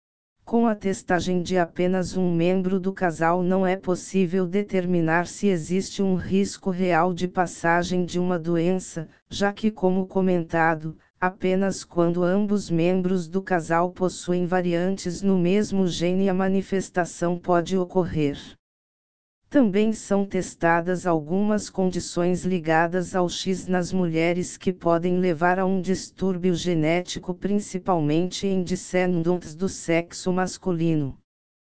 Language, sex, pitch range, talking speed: Portuguese, female, 175-190 Hz, 125 wpm